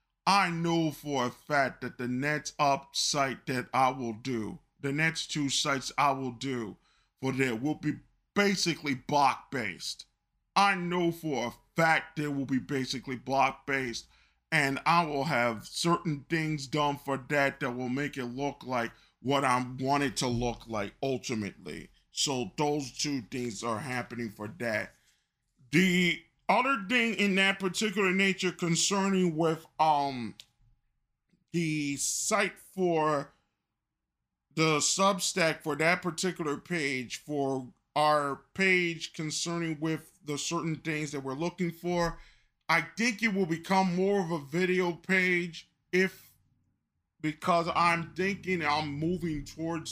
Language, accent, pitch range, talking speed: English, American, 130-170 Hz, 140 wpm